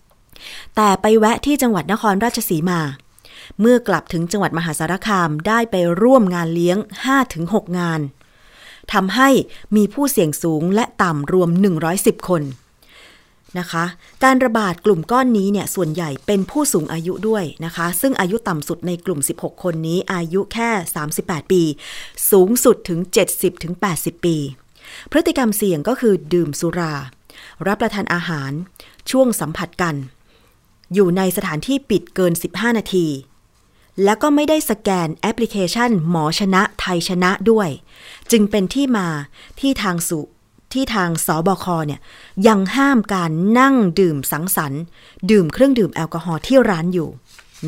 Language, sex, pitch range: Thai, female, 165-215 Hz